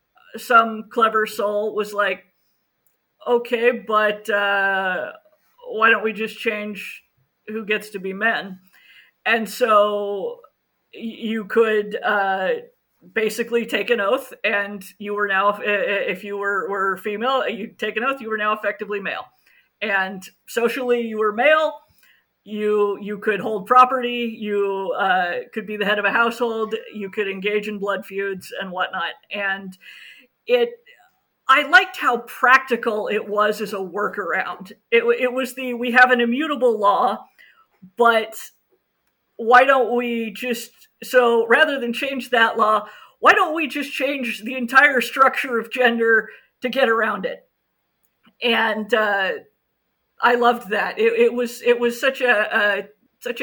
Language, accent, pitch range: English, American, 210-250 Hz